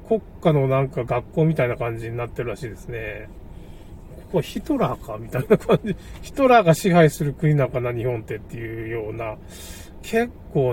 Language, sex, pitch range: Japanese, male, 115-160 Hz